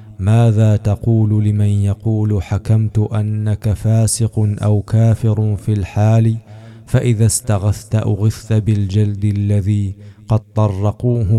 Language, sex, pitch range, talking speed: Arabic, male, 100-110 Hz, 95 wpm